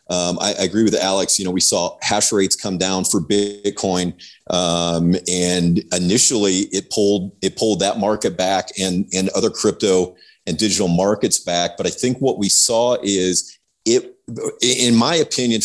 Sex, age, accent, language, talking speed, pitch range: male, 40-59, American, English, 175 wpm, 95-110 Hz